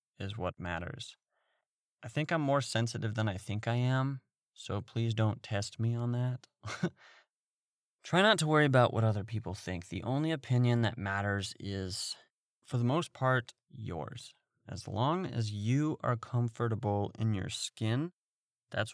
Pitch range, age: 105-130 Hz, 30-49